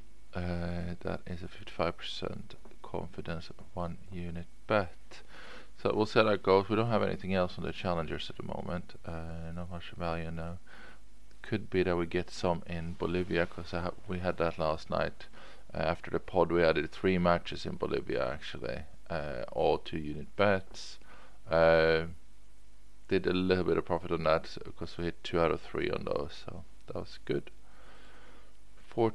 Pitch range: 85-100 Hz